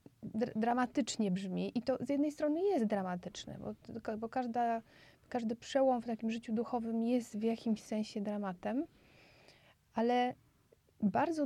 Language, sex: Polish, female